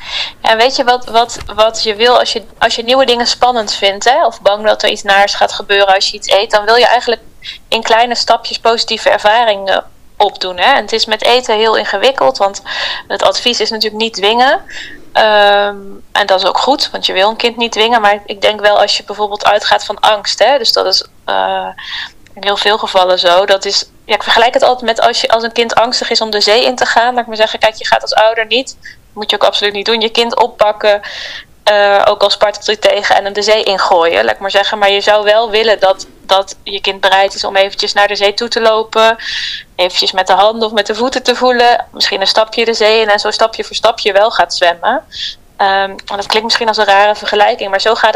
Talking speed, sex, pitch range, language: 245 wpm, female, 200-230 Hz, Dutch